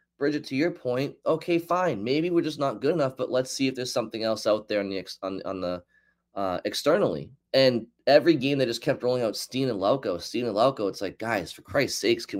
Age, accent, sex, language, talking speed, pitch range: 20-39, American, male, English, 240 wpm, 100-130 Hz